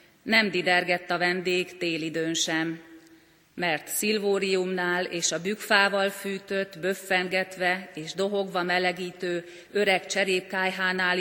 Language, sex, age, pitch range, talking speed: Hungarian, female, 30-49, 175-205 Hz, 90 wpm